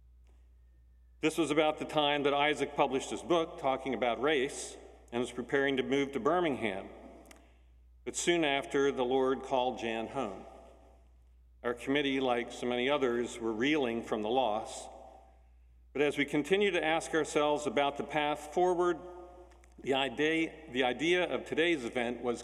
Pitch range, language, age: 115-150 Hz, English, 50-69